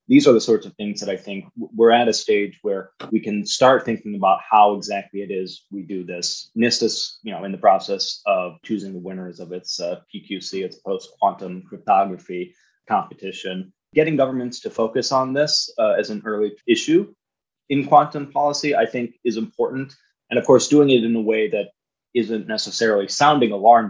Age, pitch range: 20-39, 95-120 Hz